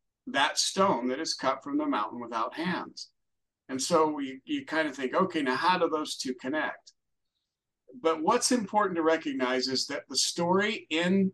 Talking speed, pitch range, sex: 180 wpm, 140-230 Hz, male